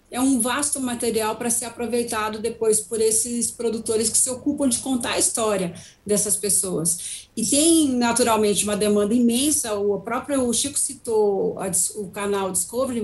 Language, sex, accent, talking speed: Portuguese, female, Brazilian, 150 wpm